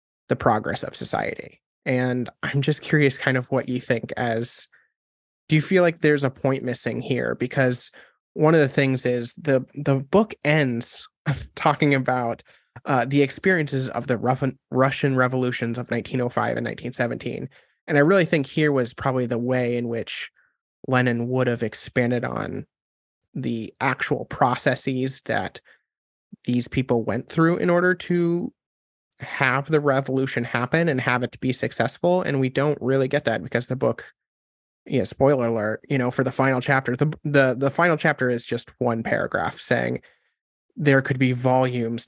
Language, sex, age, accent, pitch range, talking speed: English, male, 20-39, American, 120-140 Hz, 165 wpm